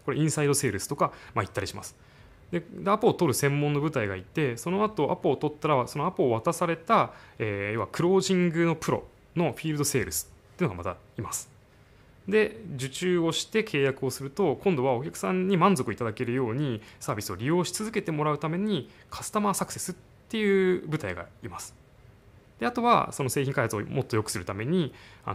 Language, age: Japanese, 20-39